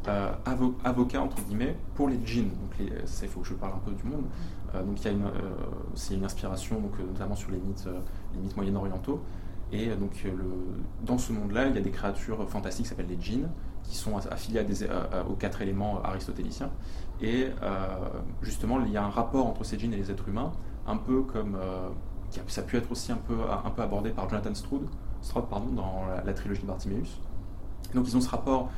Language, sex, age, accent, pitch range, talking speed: French, male, 20-39, French, 95-115 Hz, 225 wpm